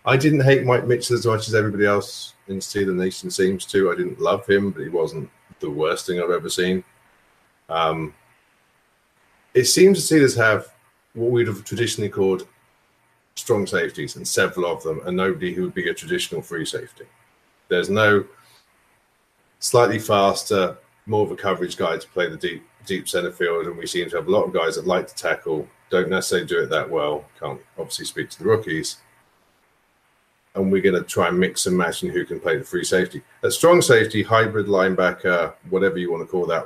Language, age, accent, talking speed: English, 40-59, British, 200 wpm